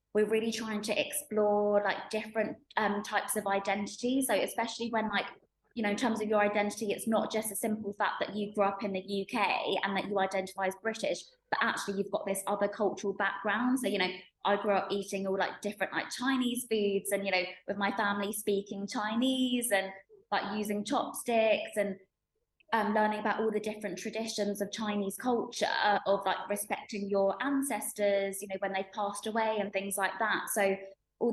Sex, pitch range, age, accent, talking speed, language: female, 195-220 Hz, 20-39, British, 195 wpm, English